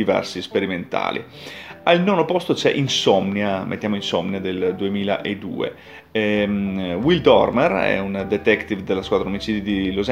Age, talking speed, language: 30-49, 130 wpm, Italian